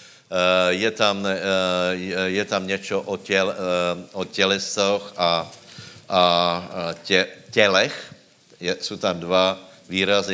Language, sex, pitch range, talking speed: Slovak, male, 90-105 Hz, 115 wpm